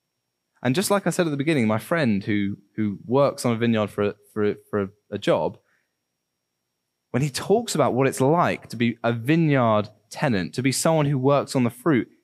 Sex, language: male, English